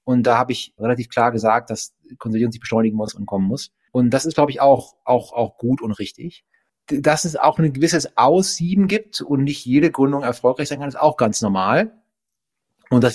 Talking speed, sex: 215 wpm, male